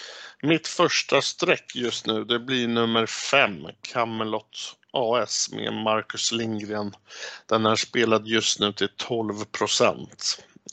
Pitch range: 110-130 Hz